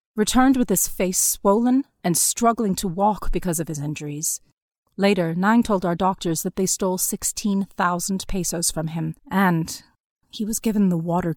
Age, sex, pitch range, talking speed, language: 30-49, female, 165-225 Hz, 165 wpm, English